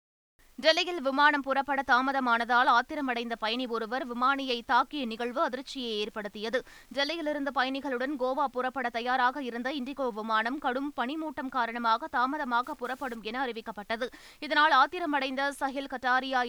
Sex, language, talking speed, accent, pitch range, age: female, Tamil, 115 wpm, native, 240-280 Hz, 20-39